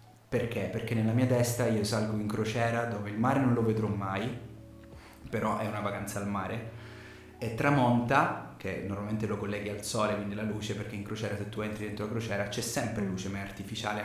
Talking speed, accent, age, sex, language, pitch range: 205 wpm, native, 20-39, male, Italian, 105-115 Hz